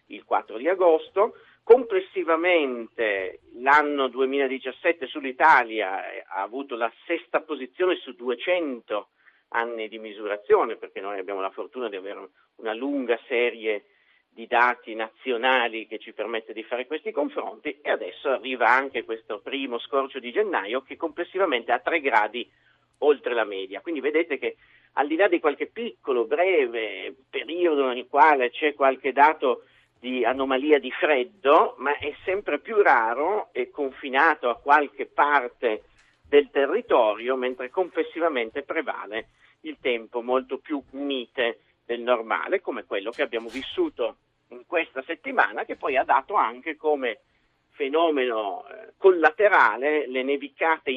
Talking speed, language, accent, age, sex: 135 wpm, Italian, native, 50-69, male